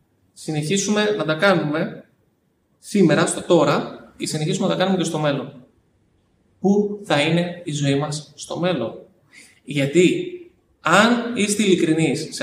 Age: 20-39